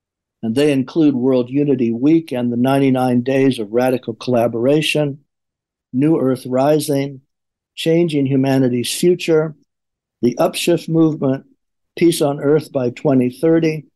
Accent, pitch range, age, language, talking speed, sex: American, 125-150 Hz, 60-79, English, 115 wpm, male